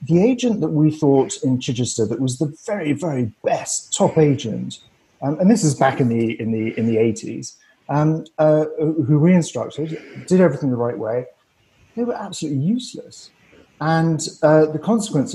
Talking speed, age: 175 wpm, 40-59